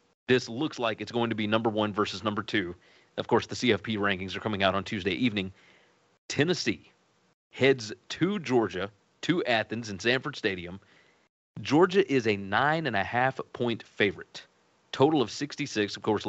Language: English